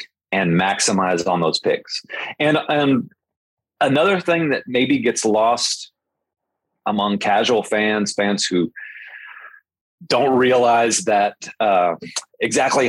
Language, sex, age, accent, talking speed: English, male, 30-49, American, 105 wpm